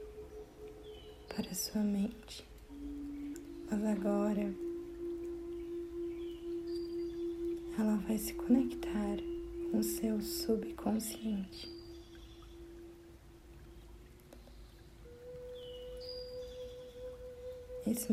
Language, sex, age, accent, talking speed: Portuguese, female, 20-39, Brazilian, 45 wpm